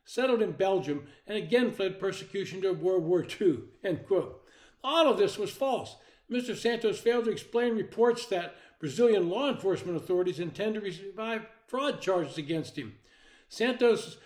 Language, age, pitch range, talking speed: English, 60-79, 170-230 Hz, 155 wpm